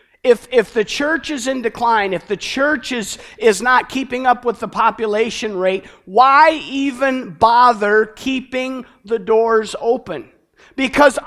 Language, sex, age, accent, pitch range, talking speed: English, male, 50-69, American, 215-265 Hz, 145 wpm